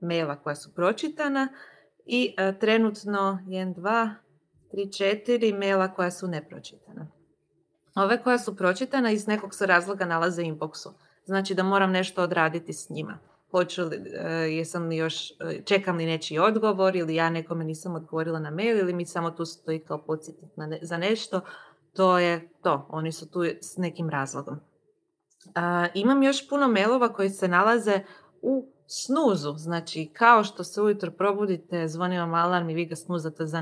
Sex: female